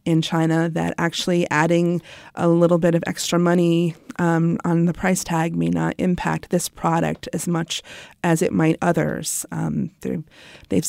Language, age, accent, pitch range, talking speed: English, 30-49, American, 160-180 Hz, 160 wpm